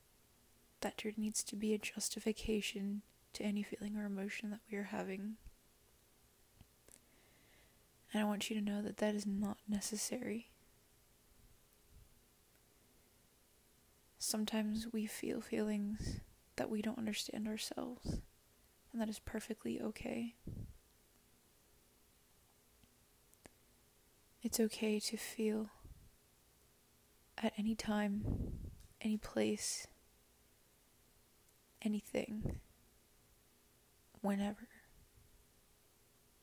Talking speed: 85 wpm